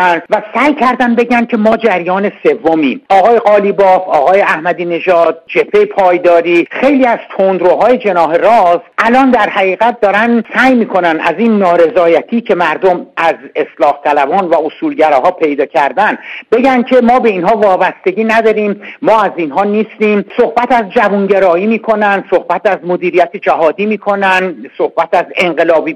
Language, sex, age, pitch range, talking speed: Persian, male, 60-79, 185-240 Hz, 140 wpm